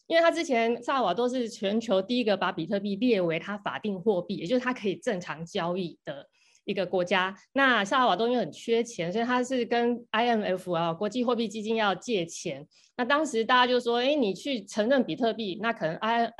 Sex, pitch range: female, 185-240 Hz